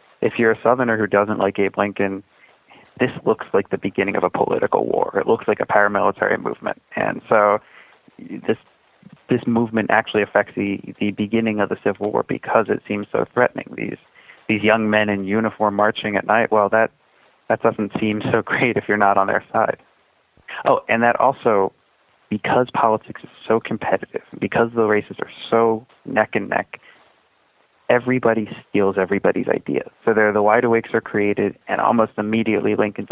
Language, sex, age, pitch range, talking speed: English, male, 30-49, 105-115 Hz, 175 wpm